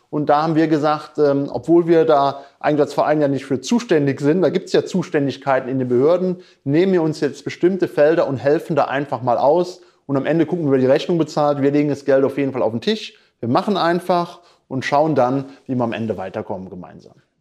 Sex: male